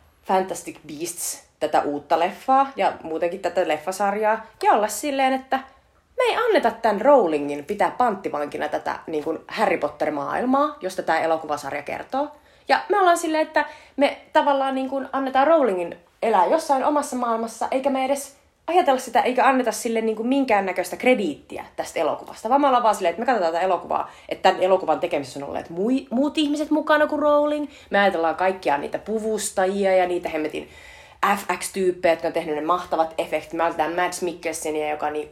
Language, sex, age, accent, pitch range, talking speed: Finnish, female, 30-49, native, 160-265 Hz, 165 wpm